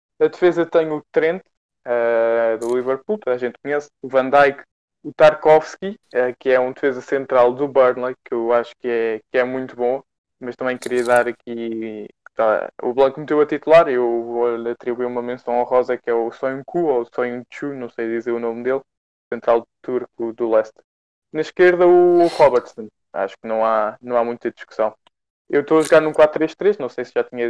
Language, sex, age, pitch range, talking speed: Portuguese, male, 20-39, 120-150 Hz, 200 wpm